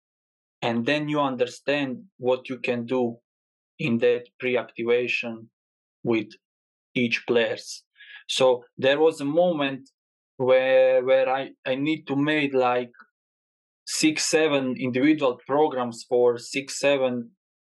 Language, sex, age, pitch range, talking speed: English, male, 20-39, 120-140 Hz, 115 wpm